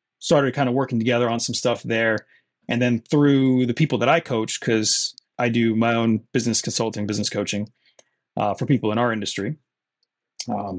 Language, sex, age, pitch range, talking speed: English, male, 30-49, 115-135 Hz, 185 wpm